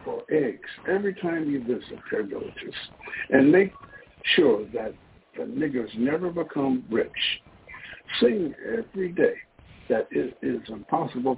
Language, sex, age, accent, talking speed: English, male, 60-79, American, 125 wpm